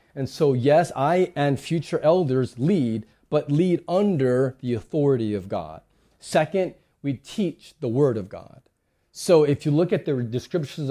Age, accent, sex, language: 30-49, American, male, English